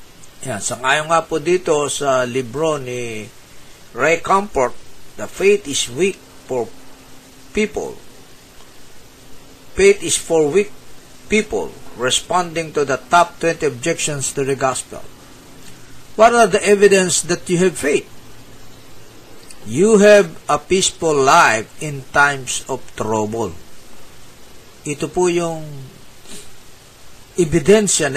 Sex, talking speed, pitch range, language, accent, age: male, 110 wpm, 120-160 Hz, Filipino, native, 50-69